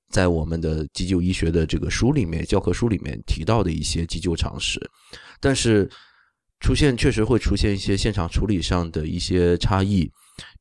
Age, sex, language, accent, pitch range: 20-39, male, Chinese, native, 85-100 Hz